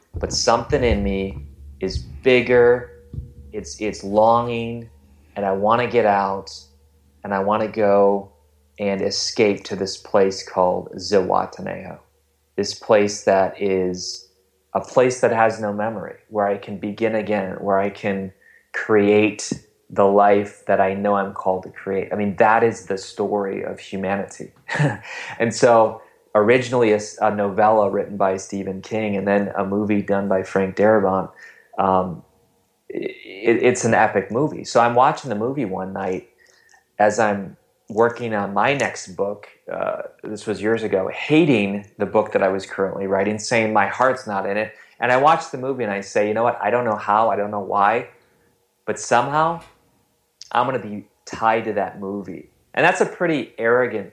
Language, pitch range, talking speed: English, 95-110 Hz, 170 wpm